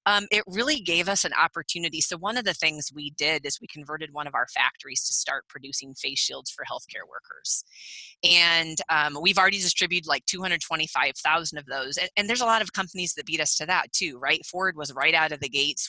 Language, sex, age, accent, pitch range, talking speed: English, female, 30-49, American, 145-185 Hz, 225 wpm